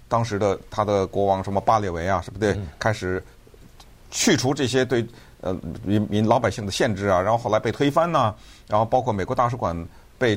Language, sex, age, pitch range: Chinese, male, 50-69, 100-140 Hz